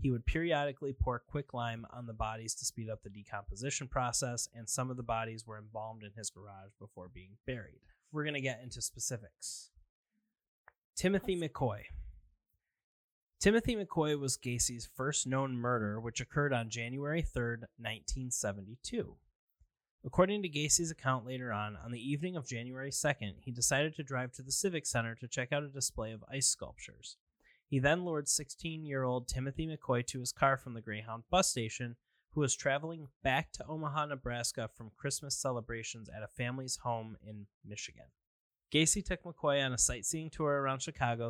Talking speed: 165 wpm